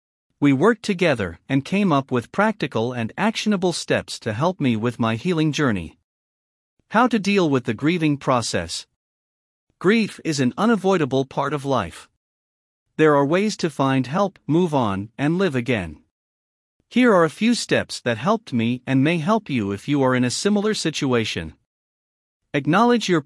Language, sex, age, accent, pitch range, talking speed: English, male, 50-69, American, 115-185 Hz, 165 wpm